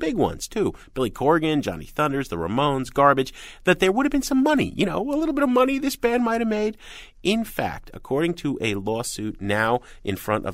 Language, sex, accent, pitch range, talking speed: English, male, American, 90-140 Hz, 220 wpm